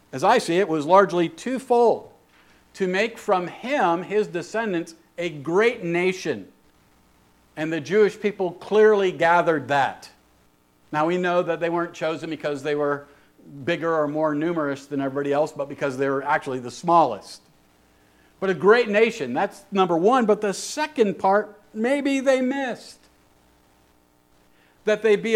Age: 50-69